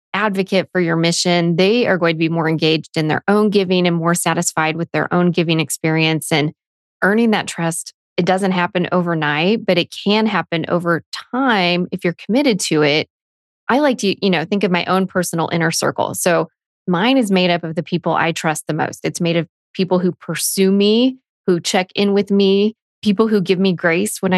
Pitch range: 170-205 Hz